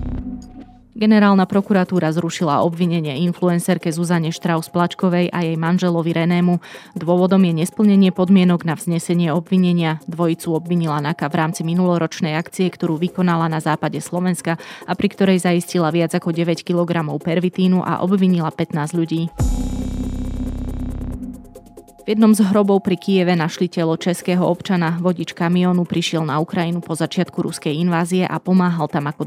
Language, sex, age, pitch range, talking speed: Slovak, female, 20-39, 160-180 Hz, 135 wpm